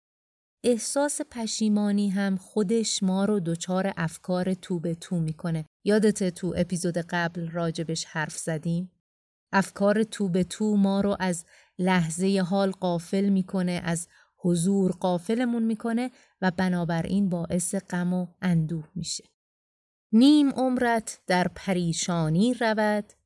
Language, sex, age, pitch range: Persian, female, 30-49, 180-225 Hz